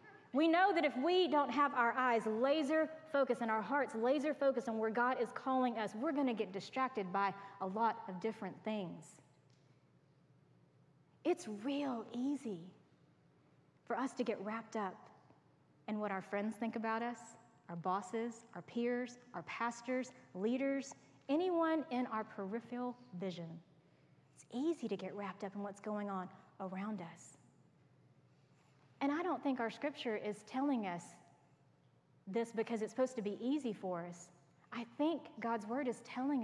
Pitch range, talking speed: 195-255 Hz, 155 wpm